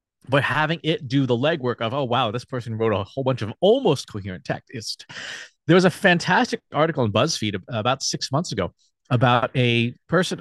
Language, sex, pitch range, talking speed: English, male, 115-155 Hz, 195 wpm